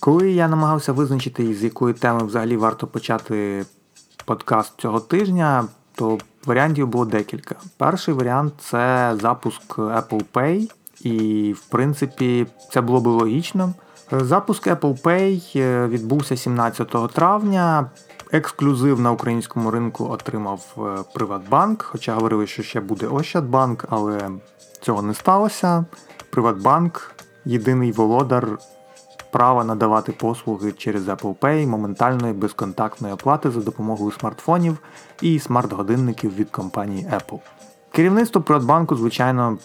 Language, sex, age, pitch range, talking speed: Ukrainian, male, 30-49, 110-145 Hz, 115 wpm